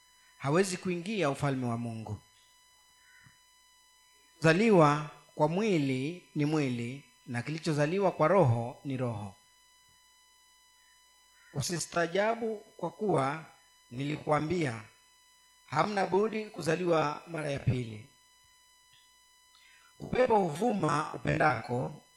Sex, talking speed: male, 80 wpm